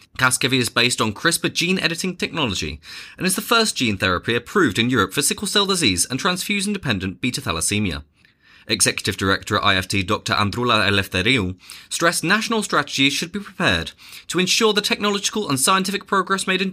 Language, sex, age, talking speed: English, male, 20-39, 160 wpm